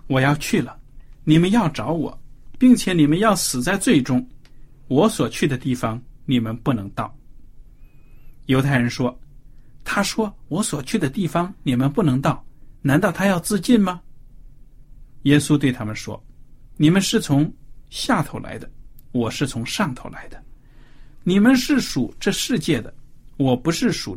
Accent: native